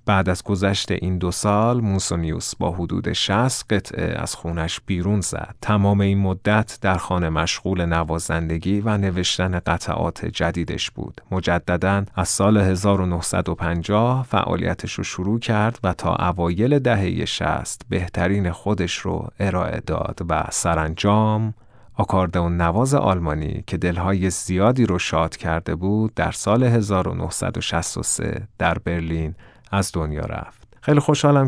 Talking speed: 130 wpm